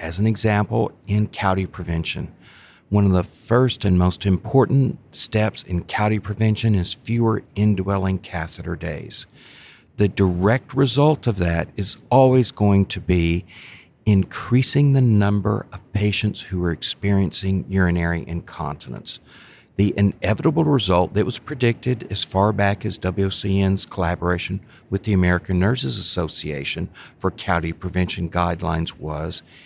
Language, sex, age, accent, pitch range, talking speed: English, male, 50-69, American, 90-115 Hz, 130 wpm